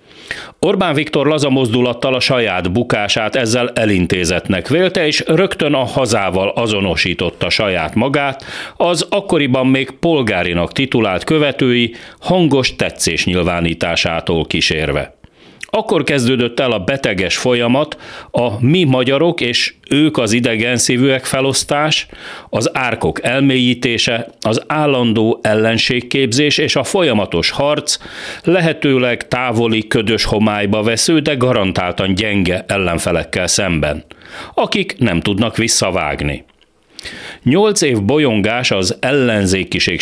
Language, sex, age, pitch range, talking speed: Hungarian, male, 40-59, 100-135 Hz, 105 wpm